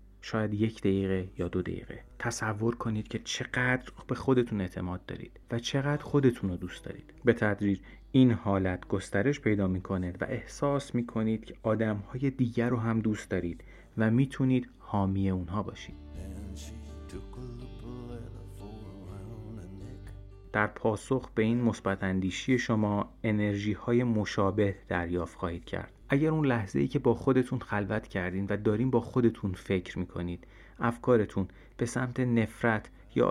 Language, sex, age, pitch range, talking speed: Persian, male, 30-49, 95-125 Hz, 135 wpm